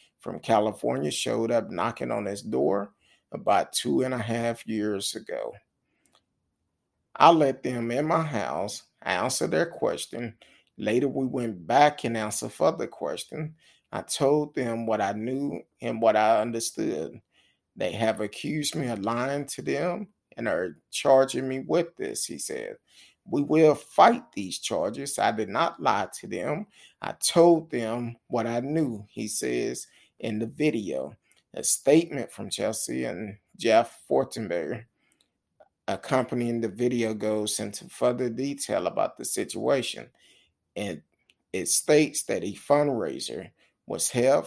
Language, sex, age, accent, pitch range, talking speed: English, male, 30-49, American, 110-145 Hz, 145 wpm